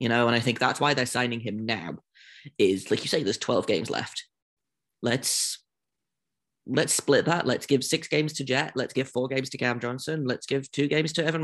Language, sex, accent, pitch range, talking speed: English, male, British, 115-145 Hz, 220 wpm